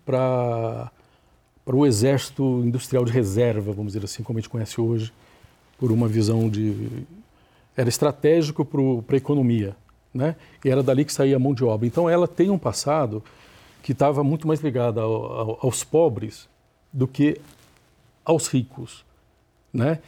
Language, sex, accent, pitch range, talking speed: Portuguese, male, Brazilian, 115-145 Hz, 150 wpm